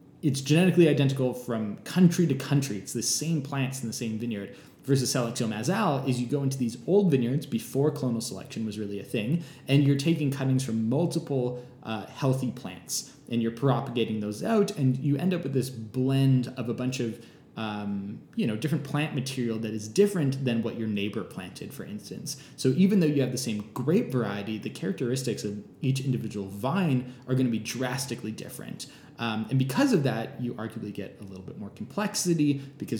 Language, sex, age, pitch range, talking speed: English, male, 20-39, 110-140 Hz, 195 wpm